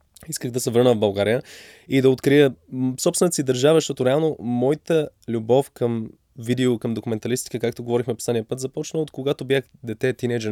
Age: 20-39